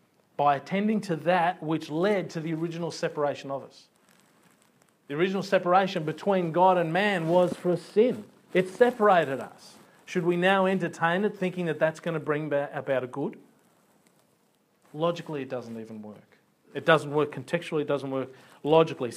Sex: male